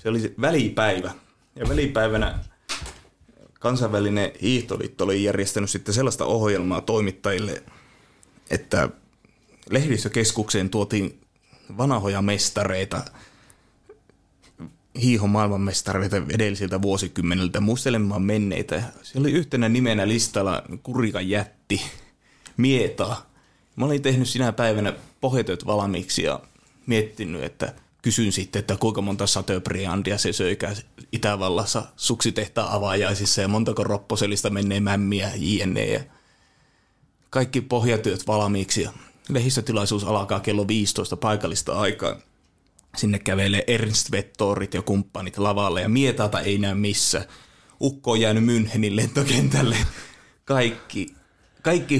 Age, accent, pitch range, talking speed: 30-49, native, 100-115 Hz, 100 wpm